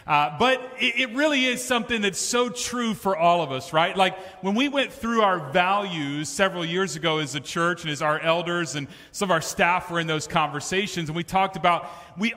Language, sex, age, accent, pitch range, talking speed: English, male, 40-59, American, 170-220 Hz, 225 wpm